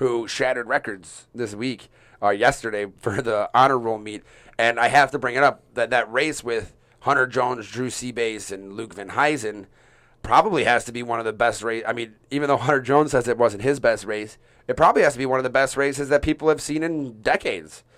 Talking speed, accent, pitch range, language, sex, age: 225 wpm, American, 110-135 Hz, English, male, 30-49